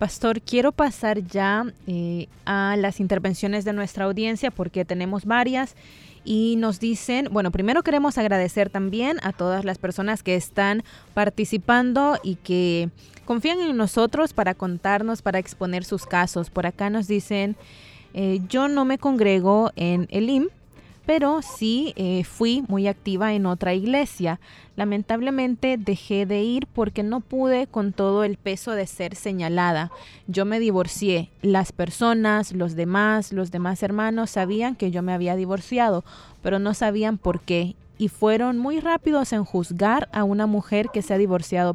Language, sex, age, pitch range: Spanish, female, 20-39, 185-230 Hz